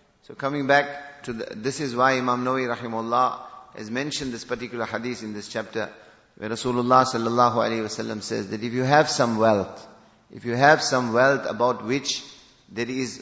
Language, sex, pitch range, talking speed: English, male, 110-130 Hz, 180 wpm